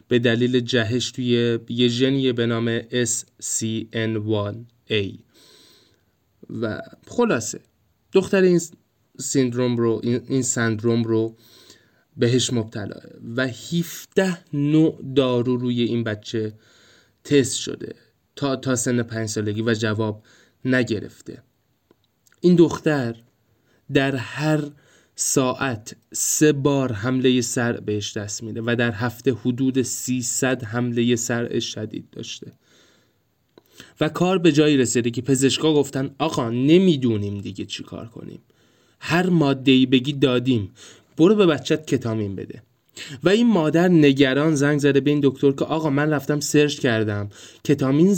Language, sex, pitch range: Persian, male, 115-145 Hz